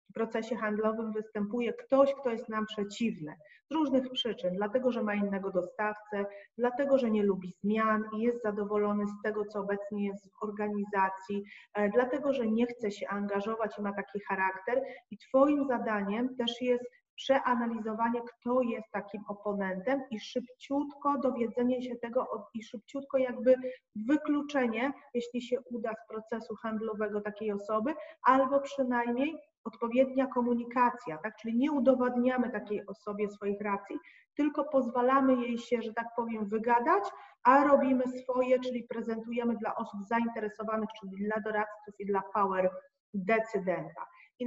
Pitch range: 210-255 Hz